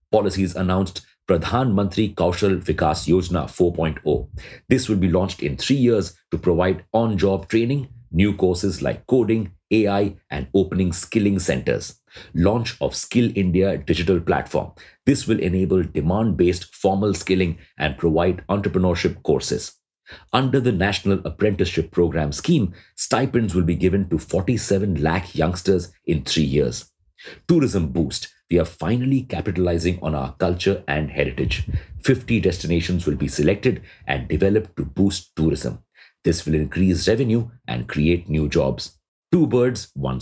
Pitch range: 85-105 Hz